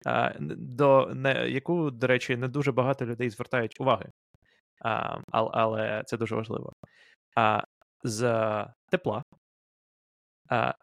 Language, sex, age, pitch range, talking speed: Ukrainian, male, 20-39, 115-155 Hz, 105 wpm